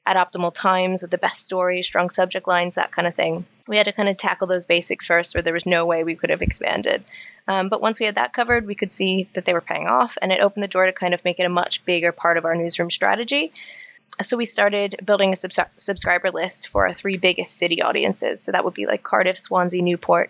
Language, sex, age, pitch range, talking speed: English, female, 20-39, 175-200 Hz, 255 wpm